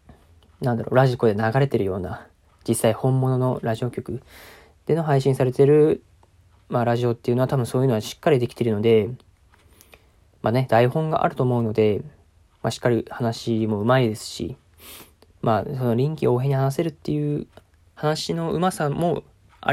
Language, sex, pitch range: Japanese, male, 100-140 Hz